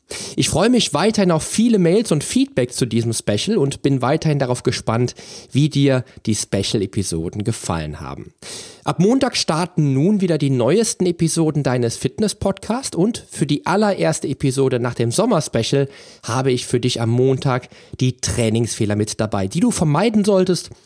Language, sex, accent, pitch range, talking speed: German, male, German, 110-165 Hz, 165 wpm